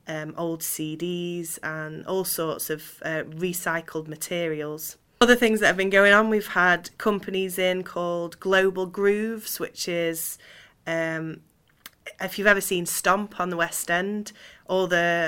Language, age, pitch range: English, 20-39, 160-195 Hz